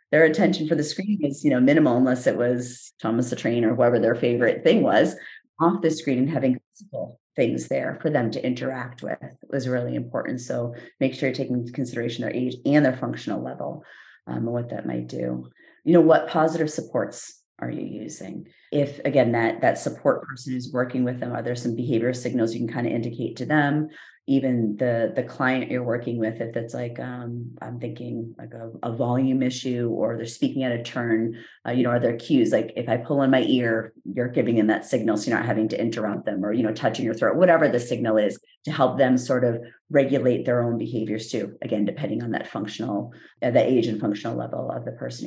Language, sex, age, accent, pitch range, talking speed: English, female, 30-49, American, 120-145 Hz, 225 wpm